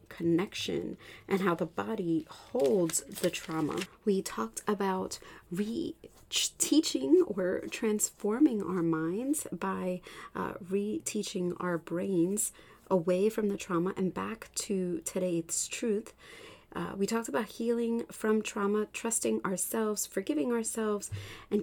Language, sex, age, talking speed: English, female, 30-49, 115 wpm